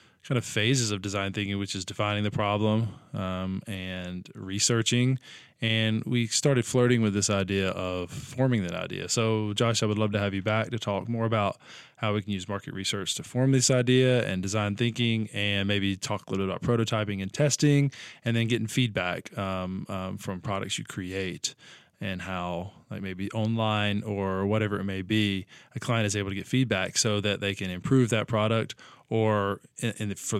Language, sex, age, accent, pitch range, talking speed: English, male, 20-39, American, 100-115 Hz, 190 wpm